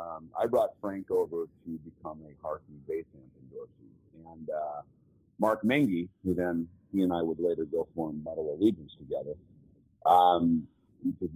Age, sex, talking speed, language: 50-69, male, 160 wpm, English